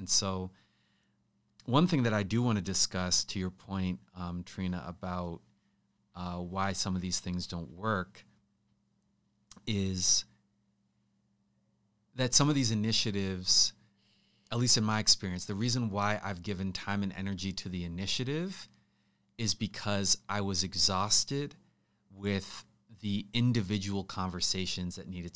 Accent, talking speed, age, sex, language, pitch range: American, 135 wpm, 30-49, male, English, 90-110 Hz